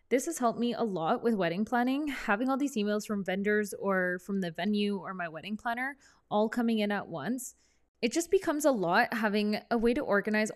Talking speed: 215 wpm